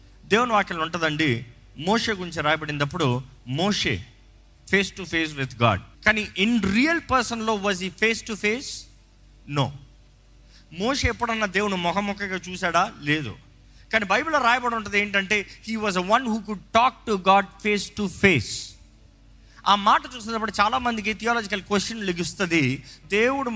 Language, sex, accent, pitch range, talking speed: Telugu, male, native, 145-215 Hz, 135 wpm